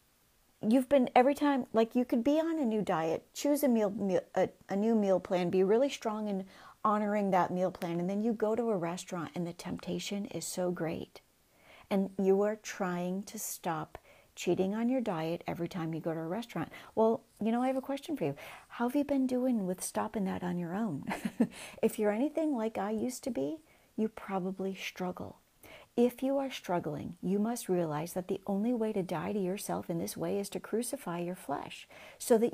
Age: 40-59